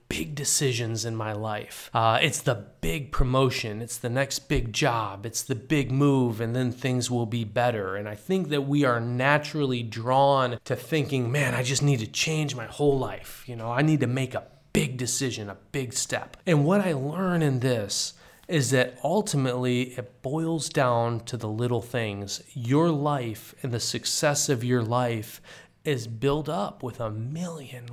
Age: 30-49